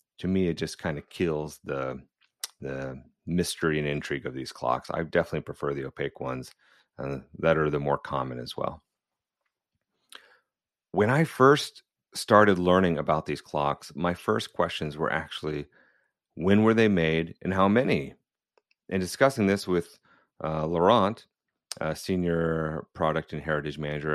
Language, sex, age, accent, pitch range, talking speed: English, male, 30-49, American, 75-100 Hz, 150 wpm